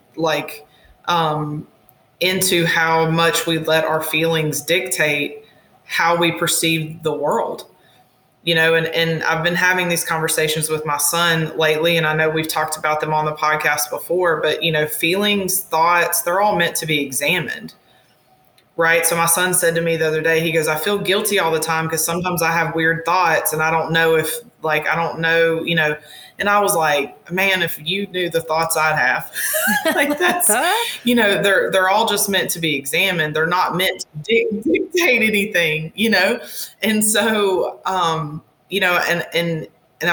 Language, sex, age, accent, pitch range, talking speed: English, female, 20-39, American, 155-185 Hz, 185 wpm